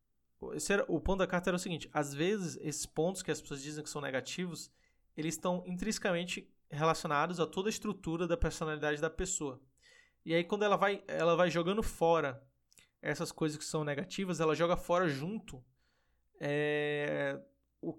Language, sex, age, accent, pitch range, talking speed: Portuguese, male, 20-39, Brazilian, 150-180 Hz, 170 wpm